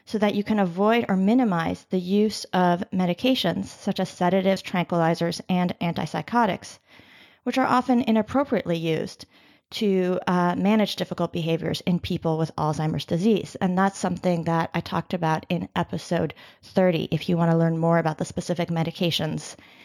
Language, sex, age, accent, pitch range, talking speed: English, female, 30-49, American, 175-215 Hz, 155 wpm